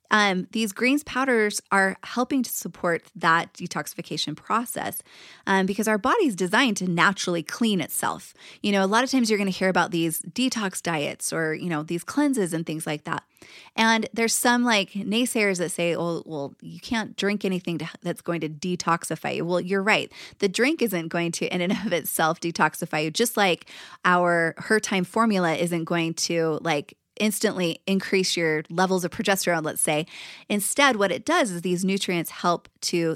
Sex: female